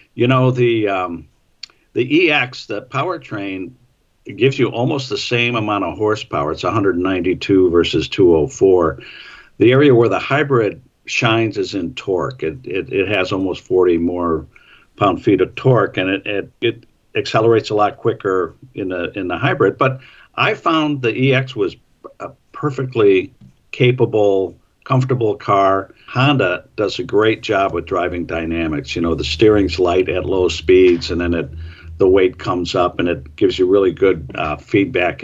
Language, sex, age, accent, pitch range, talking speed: English, male, 50-69, American, 95-140 Hz, 165 wpm